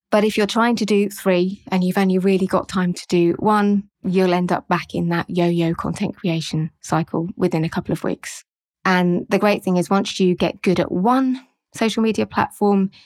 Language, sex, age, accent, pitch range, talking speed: English, female, 20-39, British, 175-195 Hz, 205 wpm